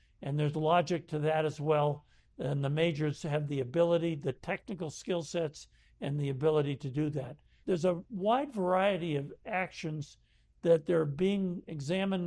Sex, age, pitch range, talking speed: male, 60-79, 145-175 Hz, 160 wpm